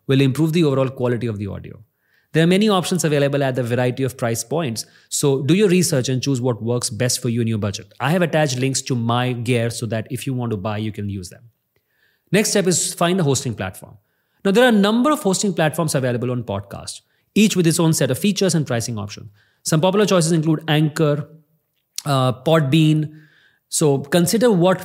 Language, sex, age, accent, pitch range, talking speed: English, male, 30-49, Indian, 125-165 Hz, 215 wpm